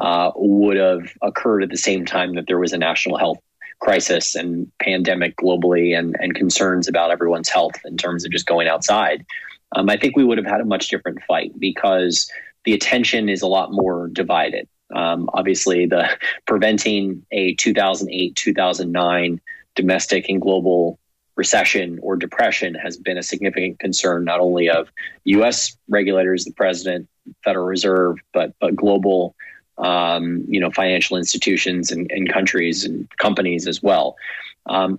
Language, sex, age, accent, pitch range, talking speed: English, male, 20-39, American, 85-95 Hz, 155 wpm